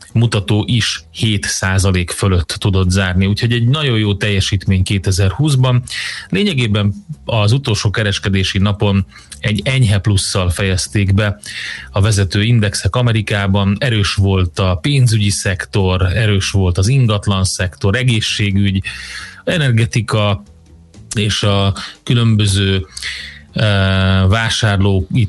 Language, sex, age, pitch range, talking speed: Hungarian, male, 30-49, 95-110 Hz, 100 wpm